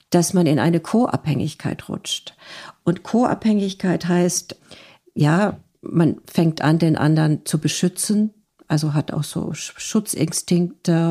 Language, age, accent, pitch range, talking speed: German, 50-69, German, 155-175 Hz, 120 wpm